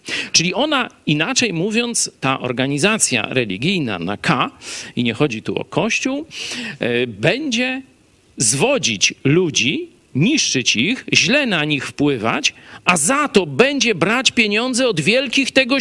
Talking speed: 125 wpm